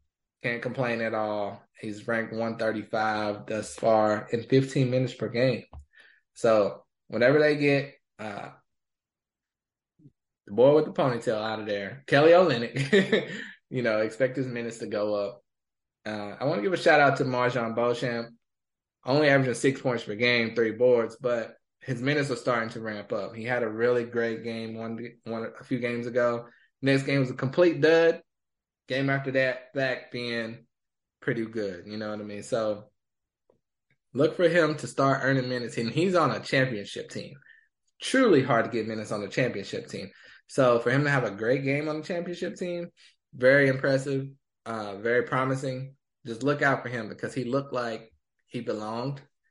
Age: 20-39